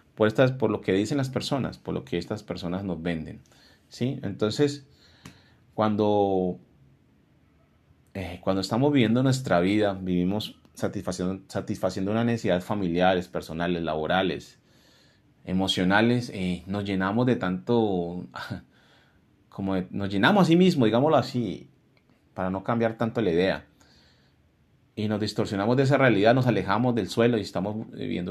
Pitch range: 90-115 Hz